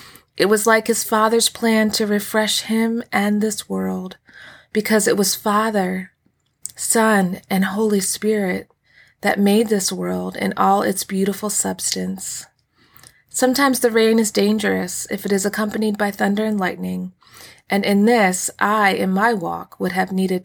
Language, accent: English, American